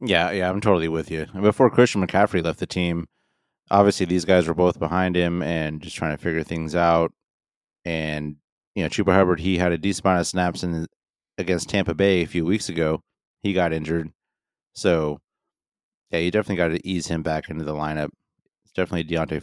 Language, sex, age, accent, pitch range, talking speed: English, male, 30-49, American, 85-100 Hz, 200 wpm